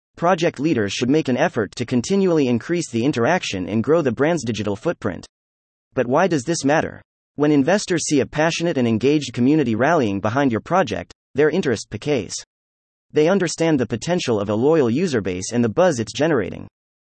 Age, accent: 30-49, American